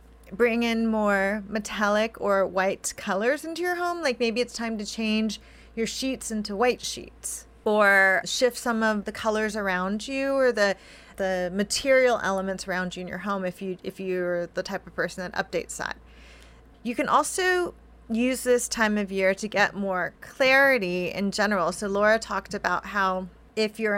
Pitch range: 195-235 Hz